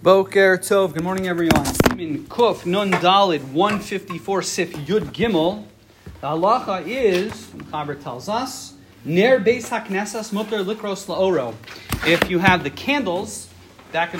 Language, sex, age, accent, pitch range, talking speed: English, male, 40-59, American, 160-215 Hz, 130 wpm